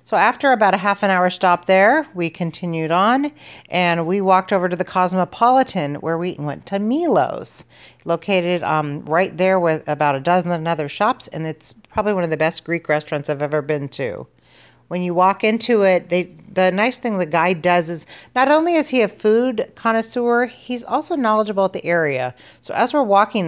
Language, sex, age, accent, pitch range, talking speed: English, female, 40-59, American, 155-210 Hz, 195 wpm